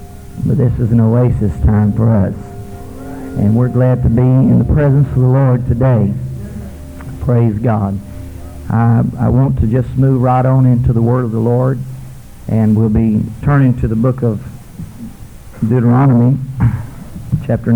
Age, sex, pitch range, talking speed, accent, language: 50-69, male, 115-130 Hz, 155 wpm, American, English